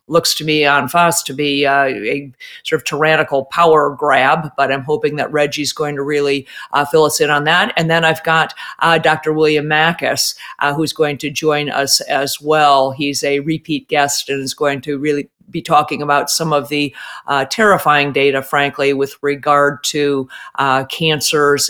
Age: 50-69